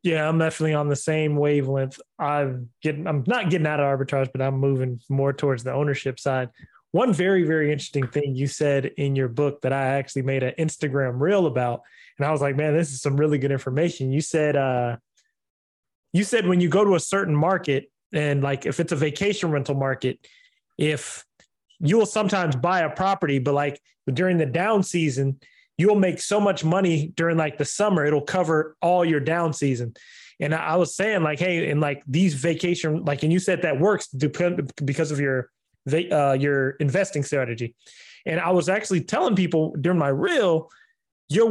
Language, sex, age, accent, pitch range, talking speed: English, male, 20-39, American, 140-180 Hz, 195 wpm